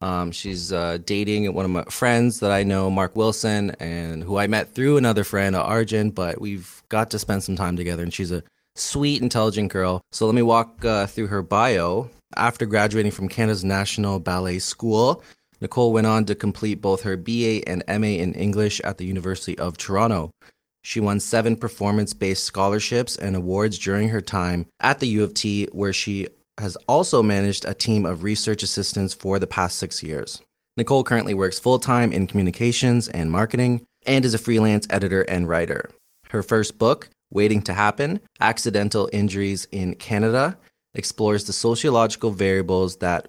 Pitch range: 95-110 Hz